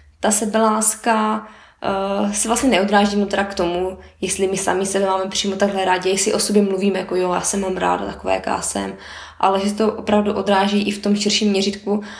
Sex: female